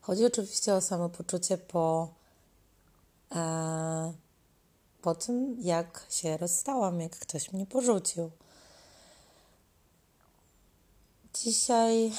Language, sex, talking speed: Polish, female, 80 wpm